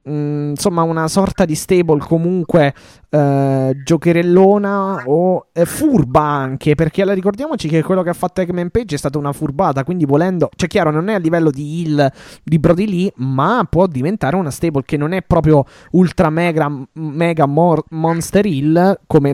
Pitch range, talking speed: 140-175 Hz, 175 wpm